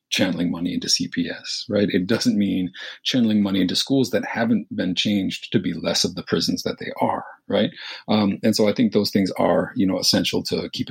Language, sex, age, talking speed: English, male, 40-59, 215 wpm